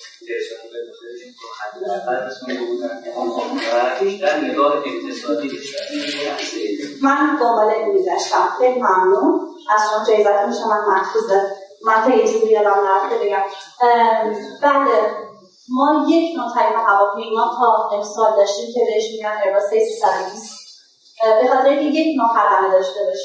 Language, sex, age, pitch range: Persian, female, 30-49, 215-290 Hz